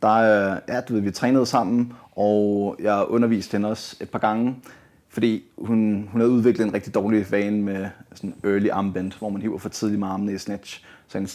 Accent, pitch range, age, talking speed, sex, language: native, 100-110 Hz, 30-49, 210 wpm, male, Danish